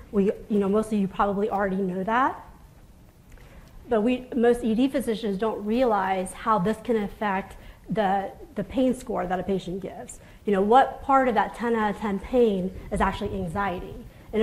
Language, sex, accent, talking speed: English, female, American, 185 wpm